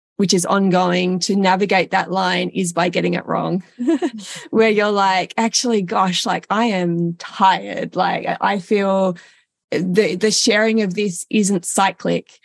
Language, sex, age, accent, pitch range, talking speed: English, female, 20-39, Australian, 185-220 Hz, 150 wpm